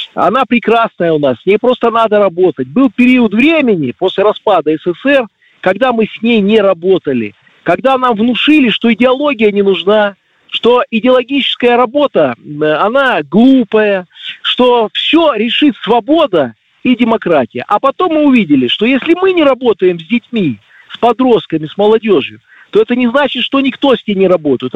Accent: native